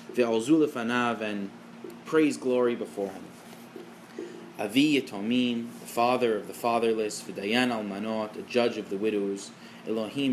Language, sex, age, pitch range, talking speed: English, male, 20-39, 110-125 Hz, 115 wpm